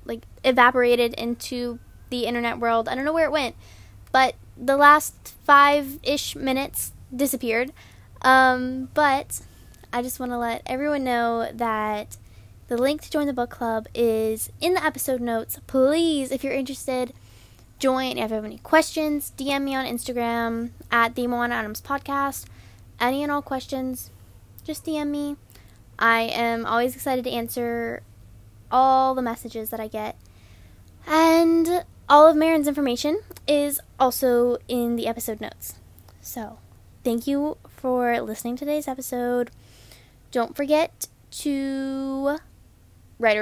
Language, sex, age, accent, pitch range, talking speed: English, female, 10-29, American, 225-280 Hz, 140 wpm